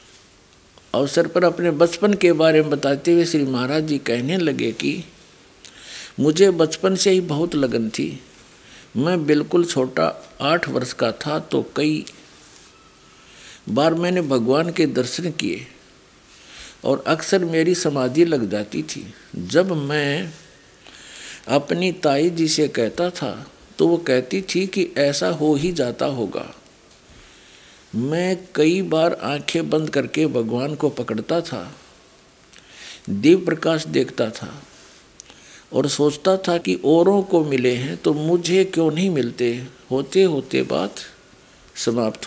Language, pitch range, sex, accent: Hindi, 130-175 Hz, male, native